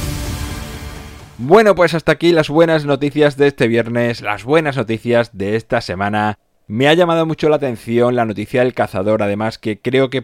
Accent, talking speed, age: Spanish, 175 wpm, 20-39